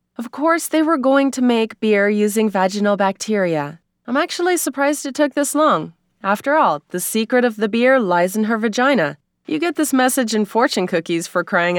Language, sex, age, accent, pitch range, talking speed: English, female, 20-39, American, 175-255 Hz, 195 wpm